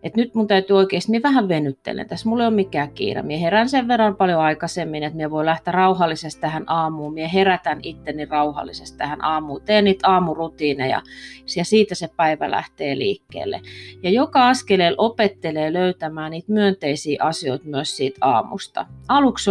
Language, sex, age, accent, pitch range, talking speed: Finnish, female, 30-49, native, 150-200 Hz, 165 wpm